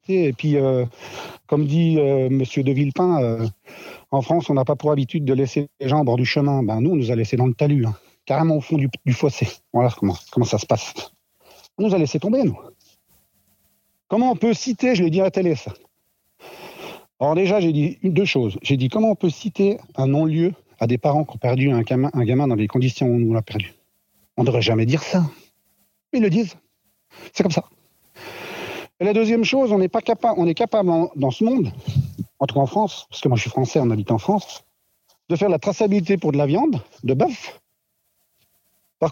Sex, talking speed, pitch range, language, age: male, 230 wpm, 125-190 Hz, French, 40-59